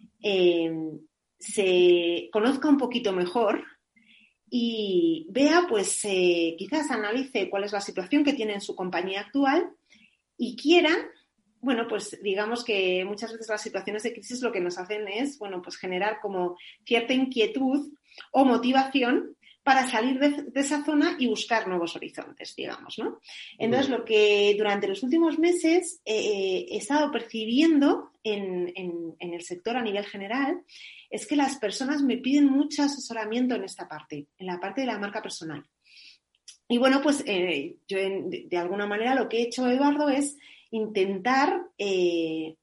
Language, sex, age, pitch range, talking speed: Spanish, female, 30-49, 200-280 Hz, 160 wpm